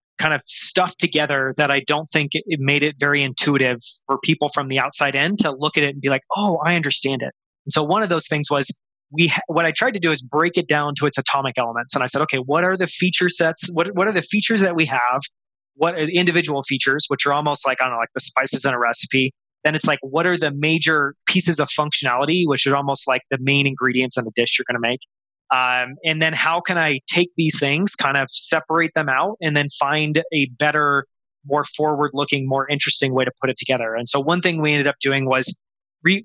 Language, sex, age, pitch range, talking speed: English, male, 20-39, 135-160 Hz, 245 wpm